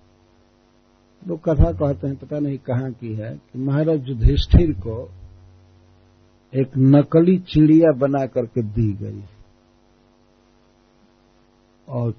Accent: native